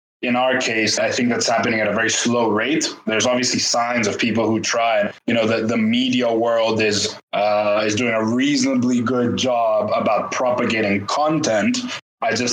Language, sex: English, male